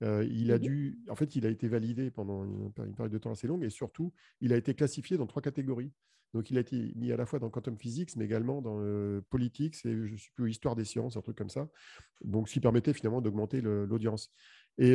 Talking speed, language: 250 wpm, French